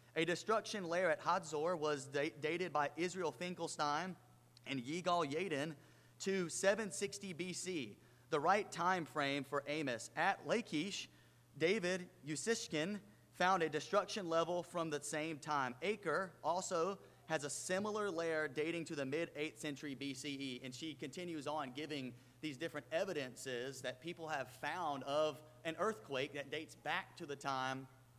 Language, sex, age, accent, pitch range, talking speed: English, male, 30-49, American, 130-170 Hz, 145 wpm